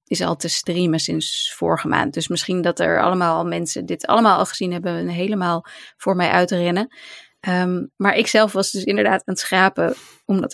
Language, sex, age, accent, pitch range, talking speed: Dutch, female, 20-39, Dutch, 175-230 Hz, 195 wpm